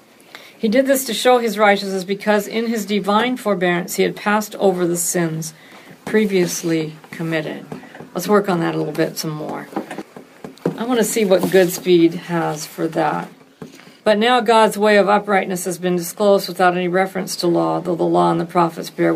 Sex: female